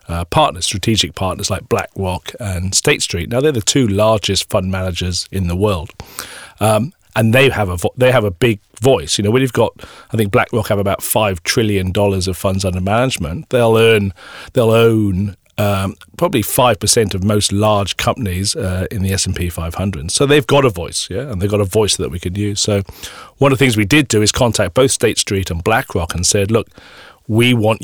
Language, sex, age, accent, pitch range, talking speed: English, male, 40-59, British, 95-115 Hz, 220 wpm